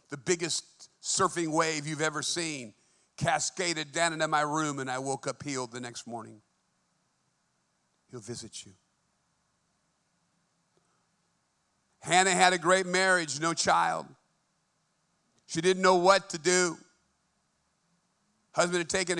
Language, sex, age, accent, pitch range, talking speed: English, male, 50-69, American, 145-185 Hz, 120 wpm